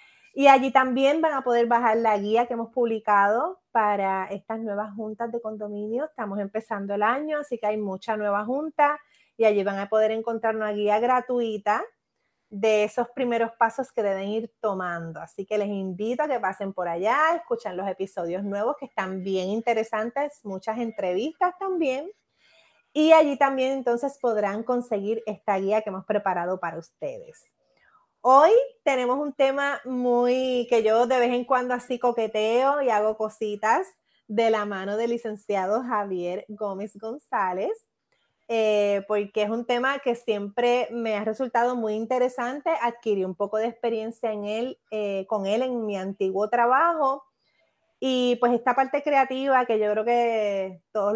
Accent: American